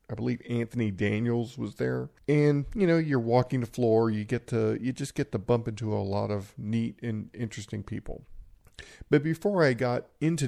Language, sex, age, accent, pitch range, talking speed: English, male, 50-69, American, 110-140 Hz, 195 wpm